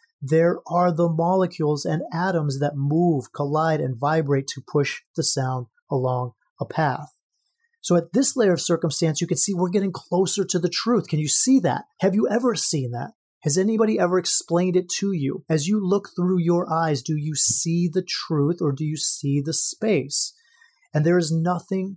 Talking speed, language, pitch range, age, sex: 190 wpm, English, 150-185 Hz, 30-49, male